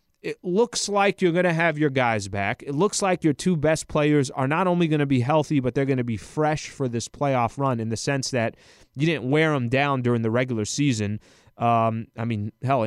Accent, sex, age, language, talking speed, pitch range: American, male, 30-49, English, 240 wpm, 120-155 Hz